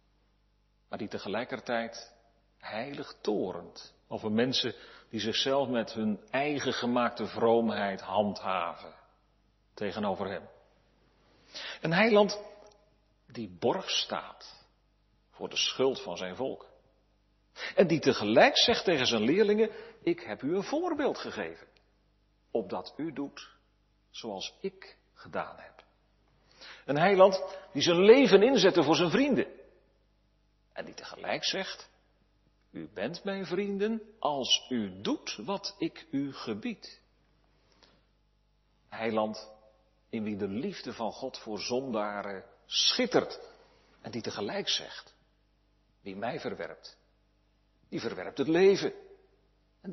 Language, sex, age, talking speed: Dutch, male, 40-59, 115 wpm